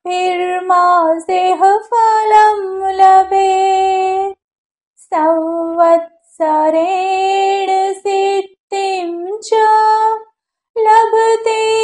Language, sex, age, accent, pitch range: Gujarati, female, 20-39, native, 345-445 Hz